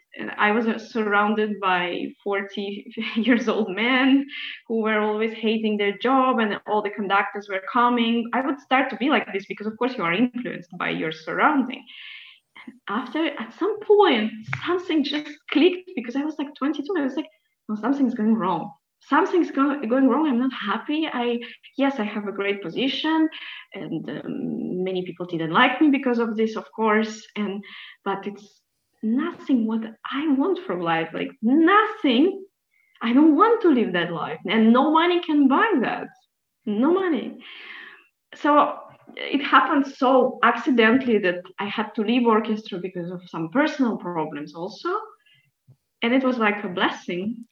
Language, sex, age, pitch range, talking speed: English, female, 20-39, 205-285 Hz, 165 wpm